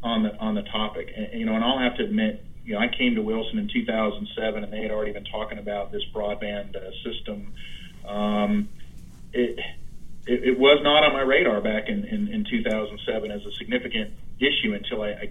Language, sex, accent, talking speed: English, male, American, 210 wpm